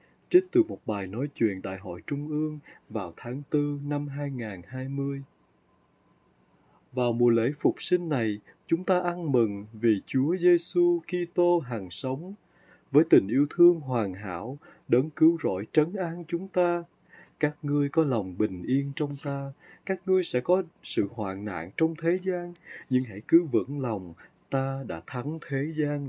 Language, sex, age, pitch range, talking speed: Vietnamese, male, 20-39, 115-175 Hz, 170 wpm